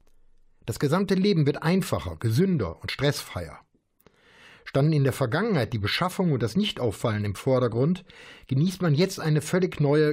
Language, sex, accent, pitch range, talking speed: German, male, German, 110-155 Hz, 150 wpm